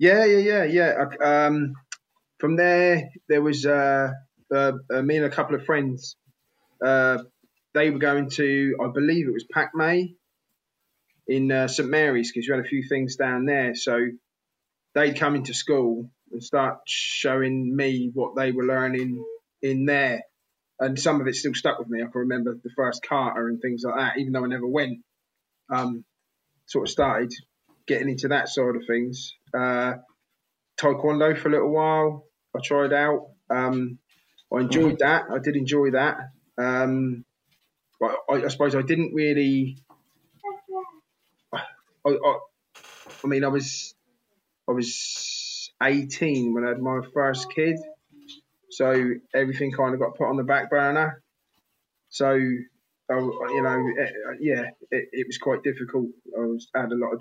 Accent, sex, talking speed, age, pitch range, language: British, male, 160 wpm, 20-39, 125-150 Hz, English